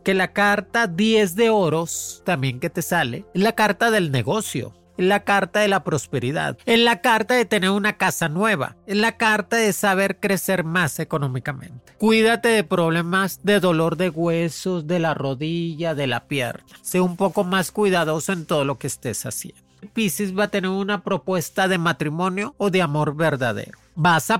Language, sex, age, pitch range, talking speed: Spanish, male, 40-59, 155-210 Hz, 185 wpm